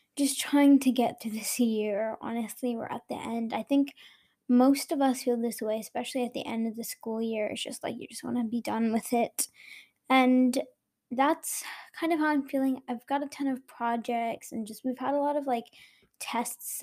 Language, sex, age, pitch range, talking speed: English, female, 10-29, 230-275 Hz, 220 wpm